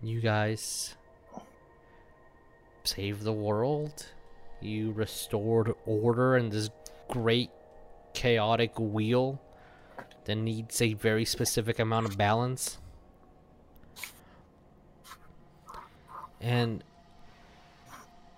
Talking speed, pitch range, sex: 70 wpm, 90-115 Hz, male